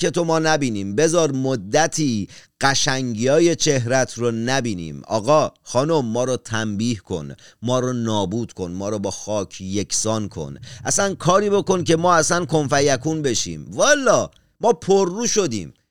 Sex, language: male, Persian